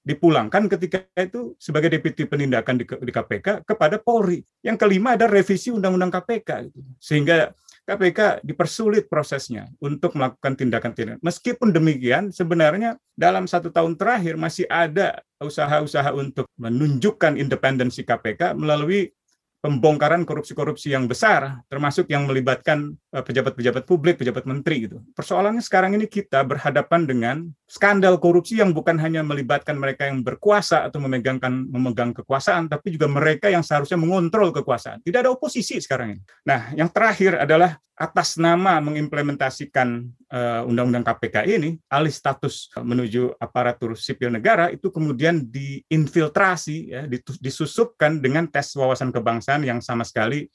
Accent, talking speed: native, 130 wpm